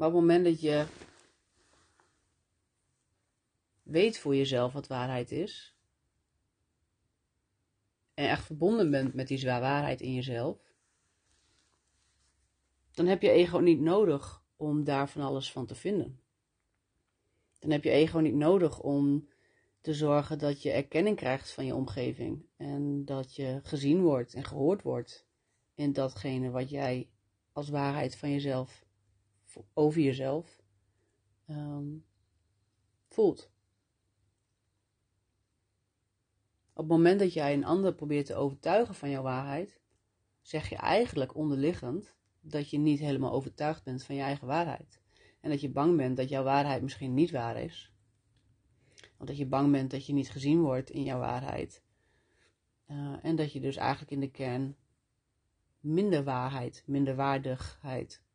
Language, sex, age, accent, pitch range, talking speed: Dutch, female, 40-59, Dutch, 110-145 Hz, 140 wpm